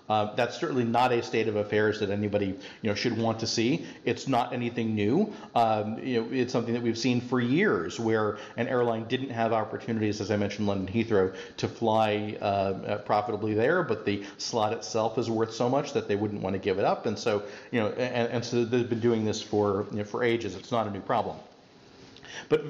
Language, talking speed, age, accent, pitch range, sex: English, 220 wpm, 40-59, American, 105-125 Hz, male